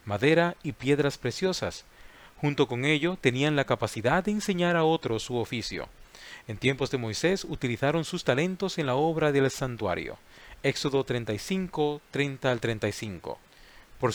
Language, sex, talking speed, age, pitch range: Spanish, male, 145 wpm, 40-59, 120-155 Hz